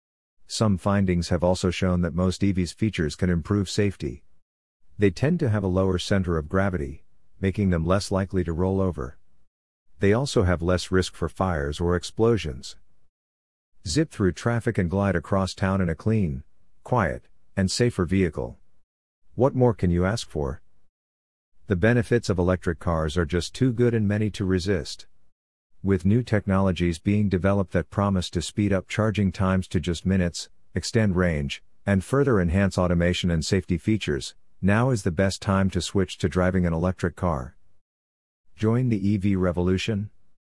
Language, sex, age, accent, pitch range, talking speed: English, male, 50-69, American, 85-100 Hz, 165 wpm